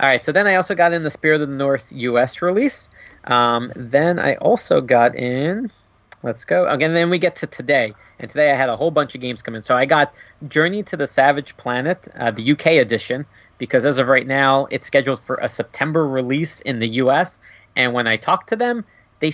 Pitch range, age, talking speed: 120-165 Hz, 30-49, 225 wpm